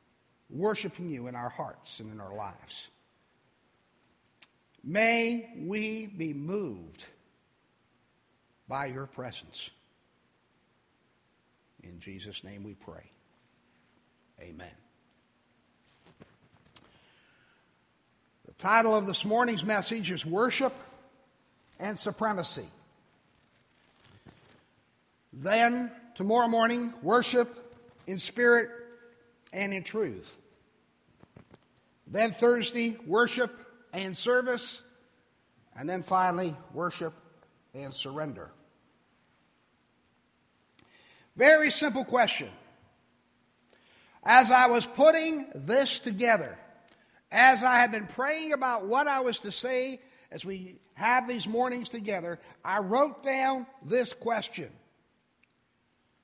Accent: American